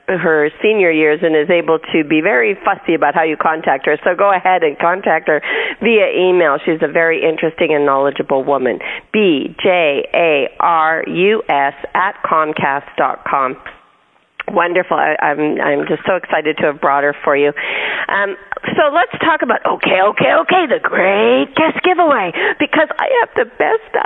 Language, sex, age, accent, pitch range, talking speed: English, female, 40-59, American, 165-250 Hz, 155 wpm